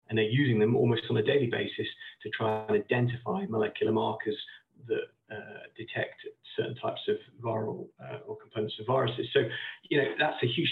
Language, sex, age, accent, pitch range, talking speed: English, male, 40-59, British, 115-140 Hz, 185 wpm